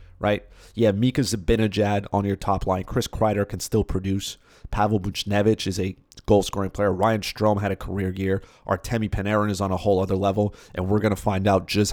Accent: American